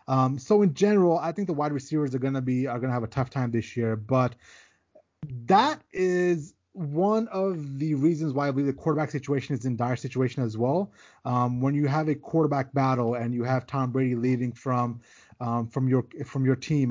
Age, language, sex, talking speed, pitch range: 20-39, English, male, 210 wpm, 125-145 Hz